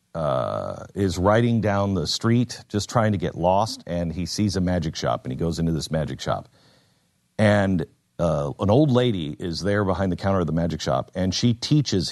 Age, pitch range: 50-69, 85-115 Hz